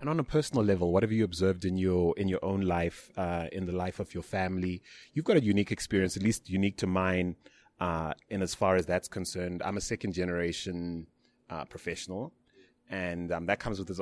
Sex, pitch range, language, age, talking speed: male, 85-100 Hz, English, 30-49, 220 wpm